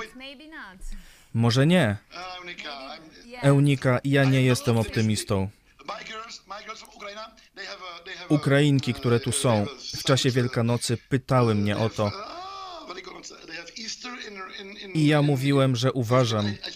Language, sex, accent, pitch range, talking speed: Polish, male, native, 120-175 Hz, 80 wpm